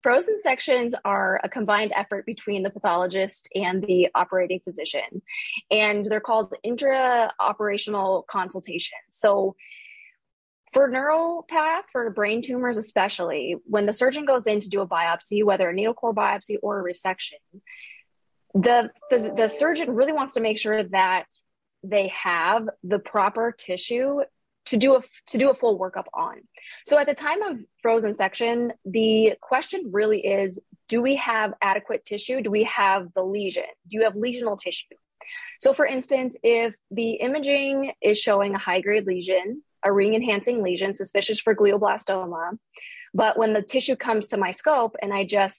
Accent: American